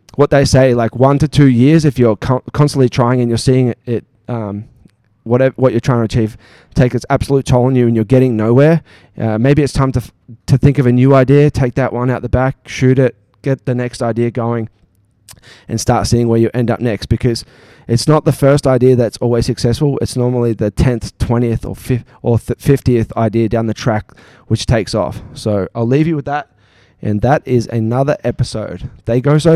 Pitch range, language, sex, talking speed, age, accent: 115-135 Hz, English, male, 215 wpm, 20-39, Australian